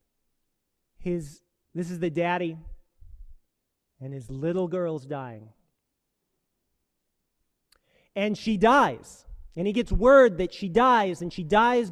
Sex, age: male, 40-59